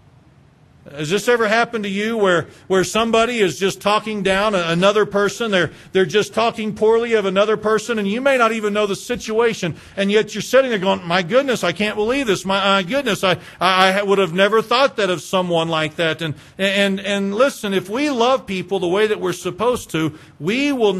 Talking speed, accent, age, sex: 210 wpm, American, 50-69, male